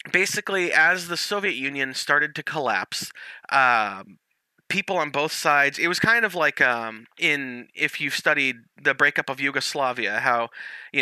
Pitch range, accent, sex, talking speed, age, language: 125-155 Hz, American, male, 160 wpm, 30-49, English